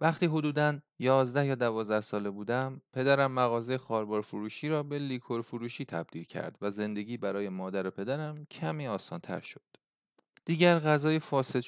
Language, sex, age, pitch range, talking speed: Persian, male, 30-49, 105-135 Hz, 155 wpm